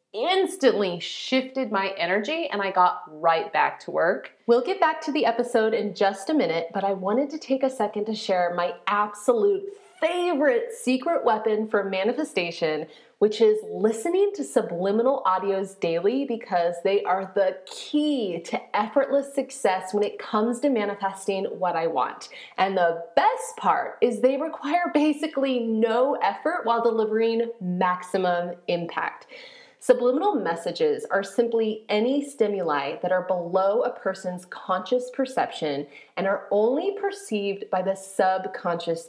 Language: English